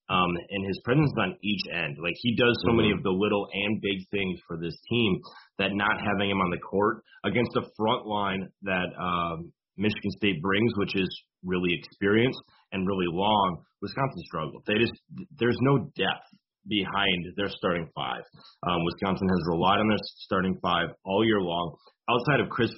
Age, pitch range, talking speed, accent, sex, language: 30-49, 95-110 Hz, 175 wpm, American, male, English